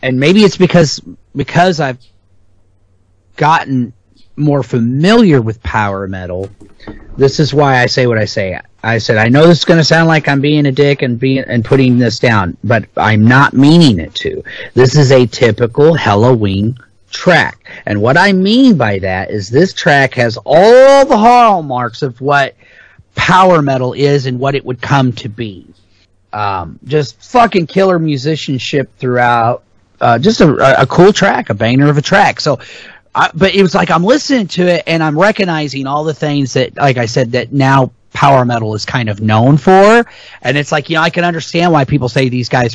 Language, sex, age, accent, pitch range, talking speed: English, male, 40-59, American, 110-160 Hz, 190 wpm